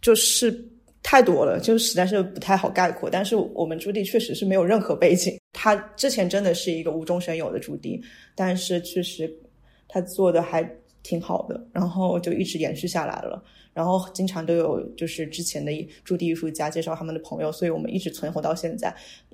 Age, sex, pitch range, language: 20-39, female, 165-190 Hz, Chinese